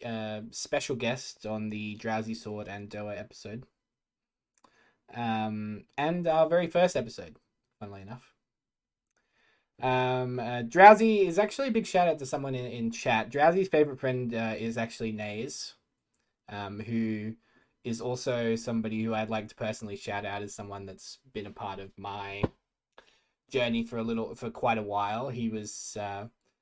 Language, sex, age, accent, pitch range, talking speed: English, male, 20-39, Australian, 110-140 Hz, 160 wpm